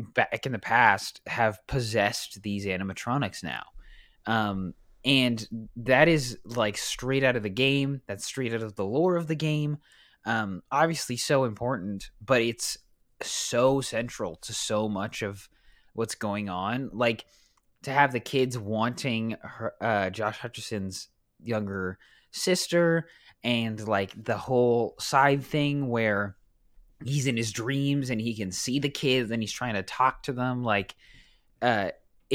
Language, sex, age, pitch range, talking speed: English, male, 20-39, 105-135 Hz, 150 wpm